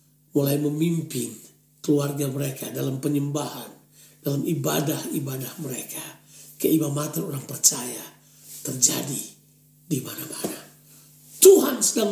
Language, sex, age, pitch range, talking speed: Indonesian, male, 50-69, 140-160 Hz, 90 wpm